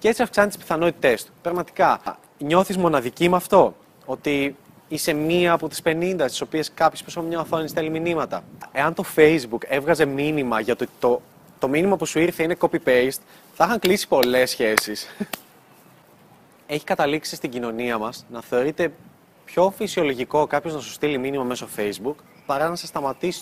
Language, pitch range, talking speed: Greek, 140-175 Hz, 165 wpm